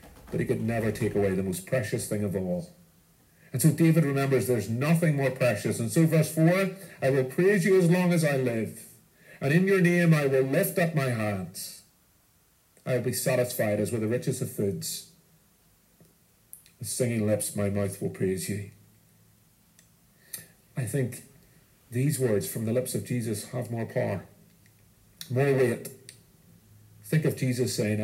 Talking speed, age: 170 wpm, 50-69